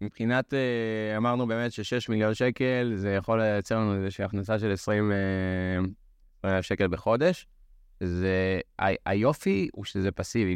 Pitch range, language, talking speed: 100-125 Hz, Hebrew, 130 wpm